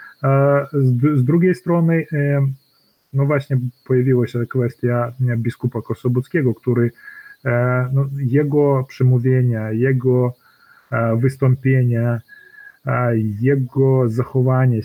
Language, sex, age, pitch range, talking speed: Polish, male, 30-49, 120-140 Hz, 75 wpm